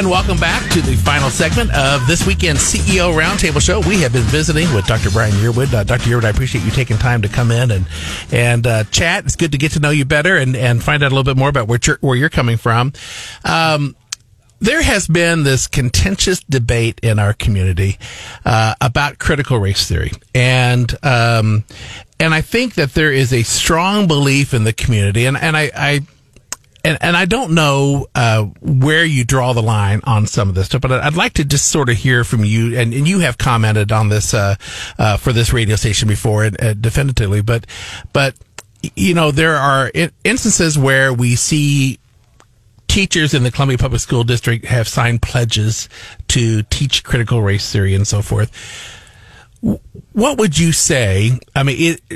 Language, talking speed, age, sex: English, 195 wpm, 50-69, male